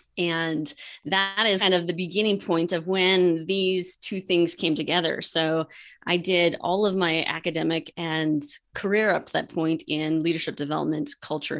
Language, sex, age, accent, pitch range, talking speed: English, female, 20-39, American, 165-200 Hz, 165 wpm